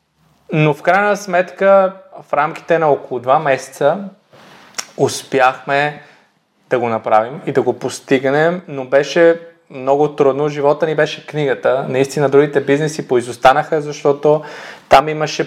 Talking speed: 130 wpm